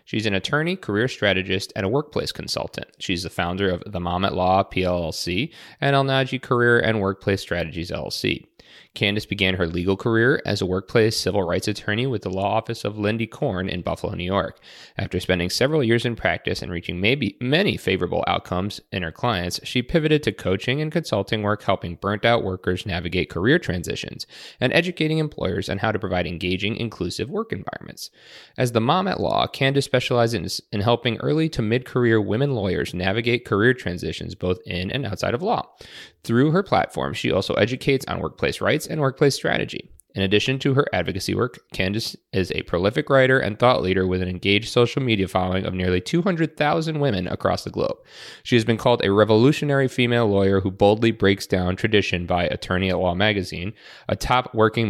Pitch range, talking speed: 95-125 Hz, 185 wpm